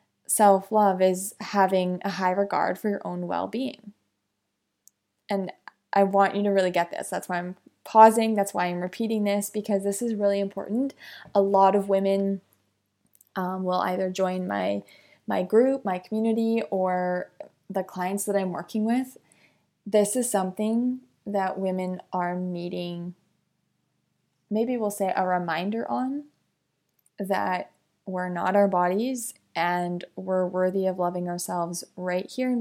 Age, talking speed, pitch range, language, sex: 20-39, 145 wpm, 180-210 Hz, English, female